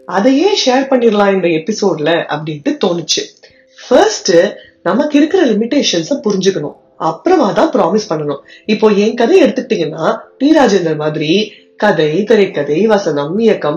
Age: 30-49